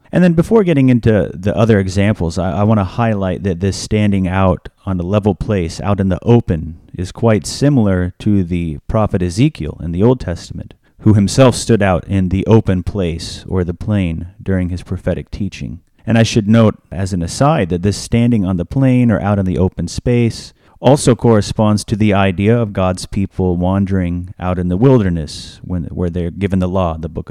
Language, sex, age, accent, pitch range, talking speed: English, male, 30-49, American, 90-115 Hz, 200 wpm